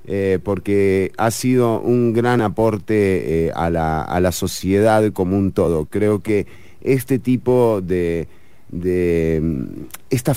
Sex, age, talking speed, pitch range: male, 30-49, 125 wpm, 105-135 Hz